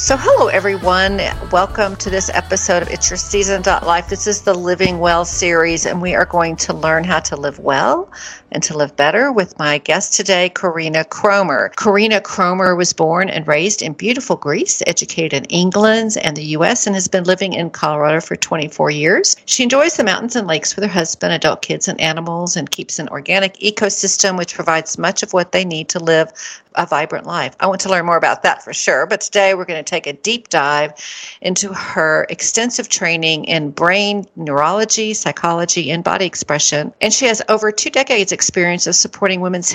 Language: English